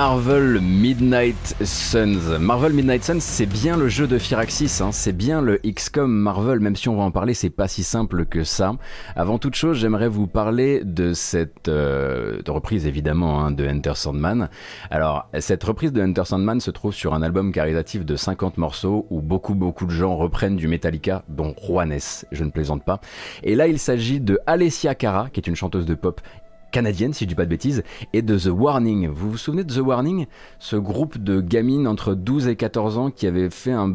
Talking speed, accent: 205 wpm, French